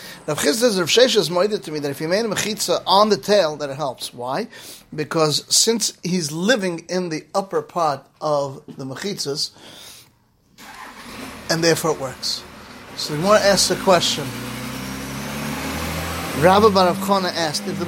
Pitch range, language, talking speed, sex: 150-195 Hz, English, 160 wpm, male